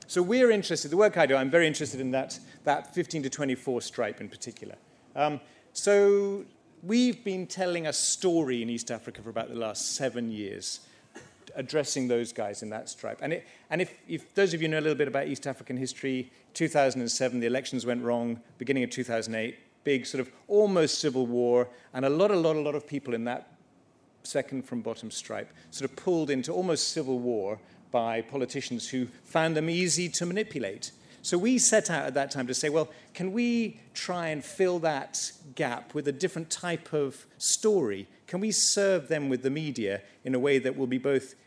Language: English